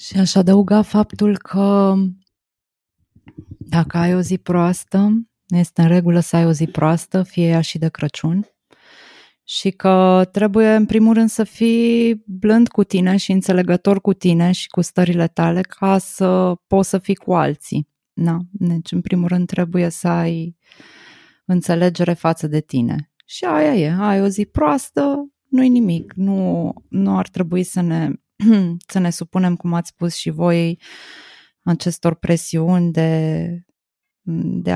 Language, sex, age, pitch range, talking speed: Romanian, female, 20-39, 165-200 Hz, 150 wpm